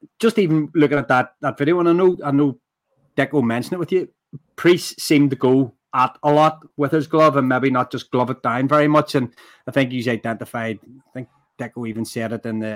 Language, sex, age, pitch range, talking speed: English, male, 30-49, 120-145 Hz, 230 wpm